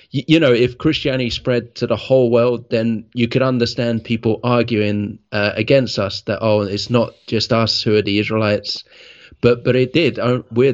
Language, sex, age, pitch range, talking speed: English, male, 30-49, 110-120 Hz, 185 wpm